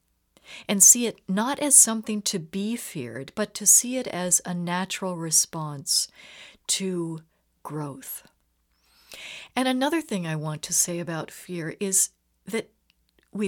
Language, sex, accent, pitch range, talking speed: English, female, American, 155-210 Hz, 140 wpm